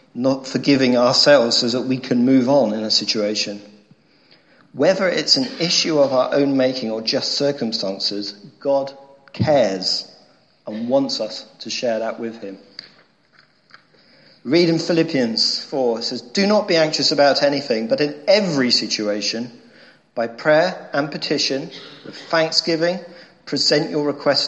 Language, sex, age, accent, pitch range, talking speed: English, male, 40-59, British, 115-160 Hz, 140 wpm